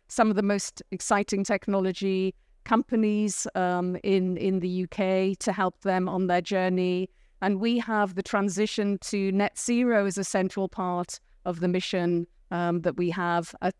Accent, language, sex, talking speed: British, English, female, 165 wpm